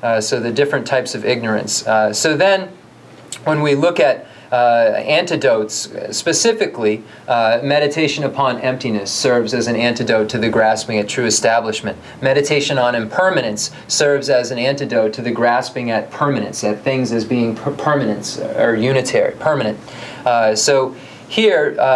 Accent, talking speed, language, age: American, 150 wpm, English, 30-49